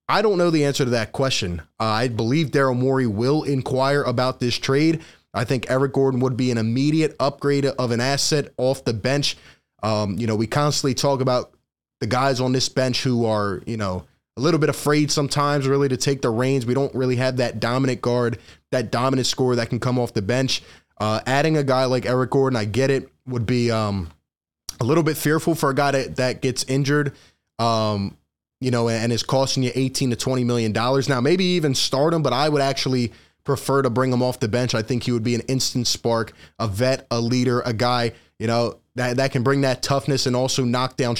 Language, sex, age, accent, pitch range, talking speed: English, male, 20-39, American, 120-140 Hz, 225 wpm